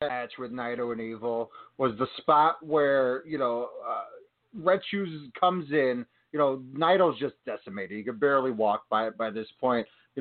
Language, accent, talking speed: English, American, 180 wpm